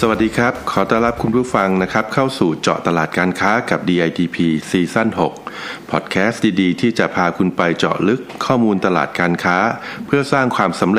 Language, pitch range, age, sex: Thai, 85-115 Hz, 60-79, male